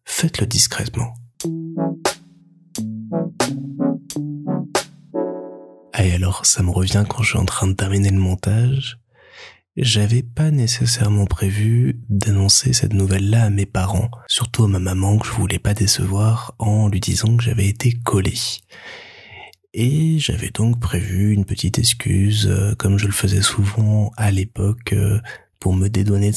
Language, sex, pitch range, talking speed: French, male, 100-125 Hz, 140 wpm